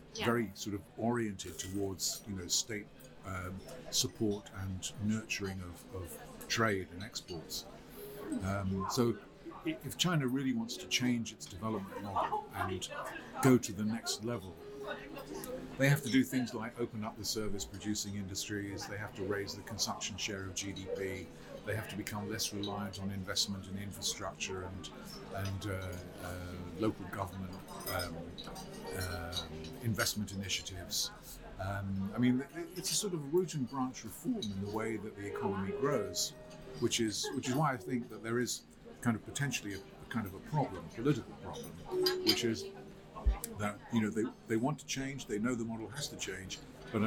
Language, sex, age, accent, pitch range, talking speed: English, male, 50-69, British, 95-120 Hz, 170 wpm